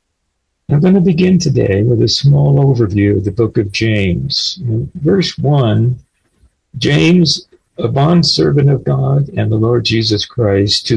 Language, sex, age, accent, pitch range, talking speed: English, male, 60-79, American, 105-150 Hz, 150 wpm